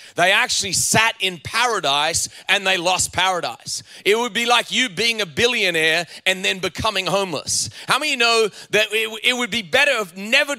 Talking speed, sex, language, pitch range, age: 170 wpm, male, English, 170-210 Hz, 30-49